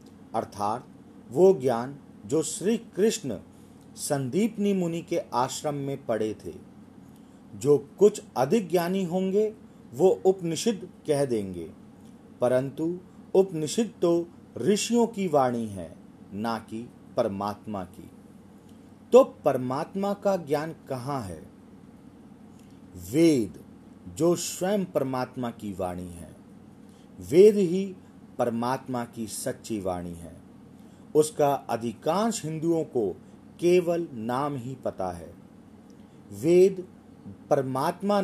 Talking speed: 100 wpm